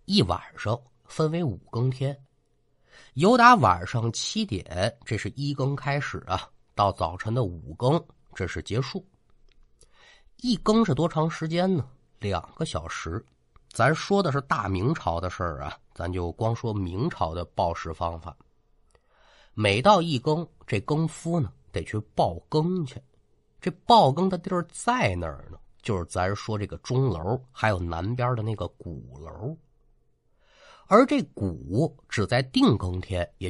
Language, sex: Chinese, male